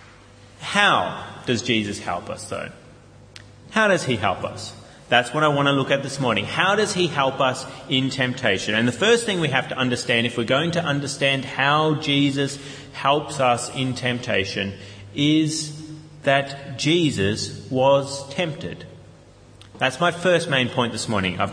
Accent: Australian